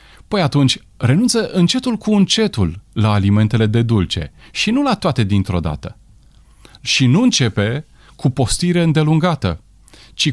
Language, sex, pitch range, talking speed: Romanian, male, 100-165 Hz, 135 wpm